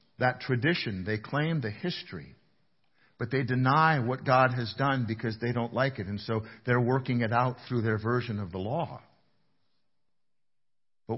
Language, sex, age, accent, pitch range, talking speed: English, male, 50-69, American, 120-170 Hz, 165 wpm